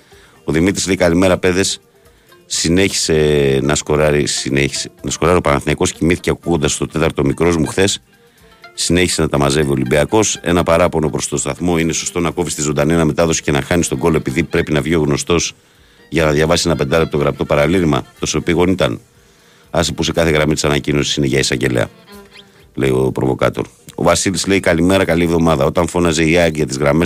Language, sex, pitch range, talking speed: Greek, male, 75-90 Hz, 185 wpm